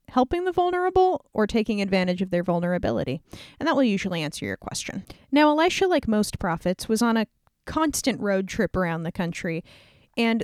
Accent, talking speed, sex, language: American, 180 wpm, female, English